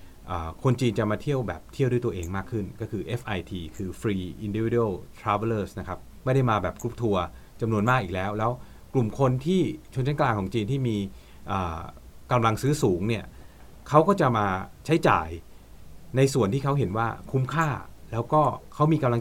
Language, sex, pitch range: Thai, male, 95-130 Hz